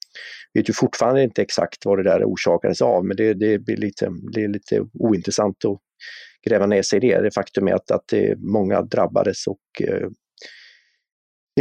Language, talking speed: Swedish, 190 wpm